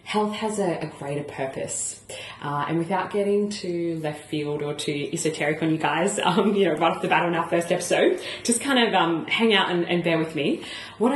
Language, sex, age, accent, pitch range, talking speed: English, female, 30-49, Australian, 140-170 Hz, 225 wpm